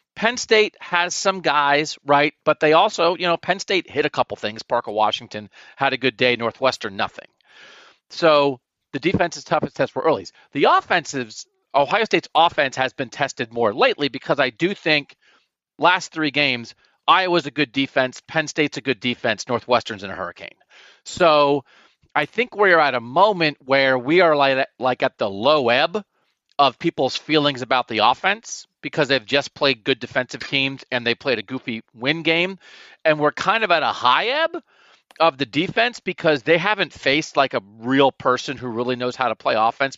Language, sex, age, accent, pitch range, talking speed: English, male, 40-59, American, 130-170 Hz, 185 wpm